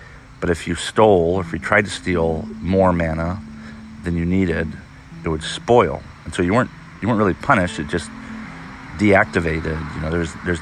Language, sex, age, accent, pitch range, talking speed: English, male, 40-59, American, 80-90 Hz, 175 wpm